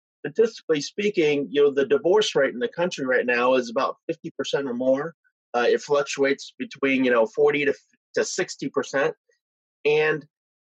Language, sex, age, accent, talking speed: English, male, 30-49, American, 165 wpm